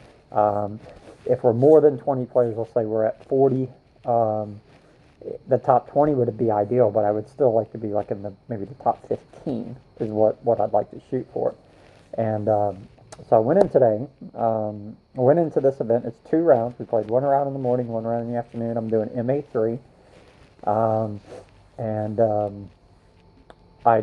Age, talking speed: 40-59, 190 wpm